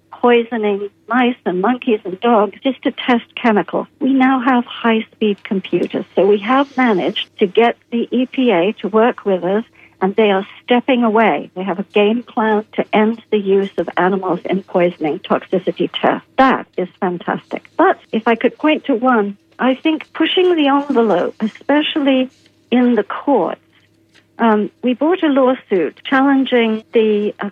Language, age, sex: English, 60-79, female